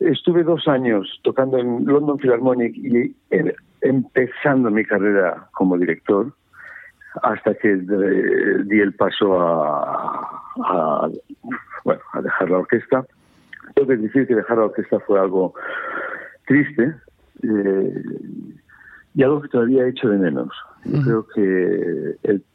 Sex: male